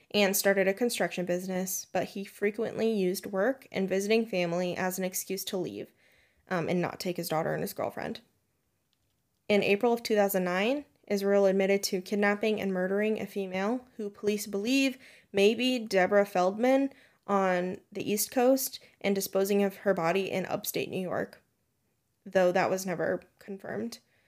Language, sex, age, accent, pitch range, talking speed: English, female, 20-39, American, 185-210 Hz, 160 wpm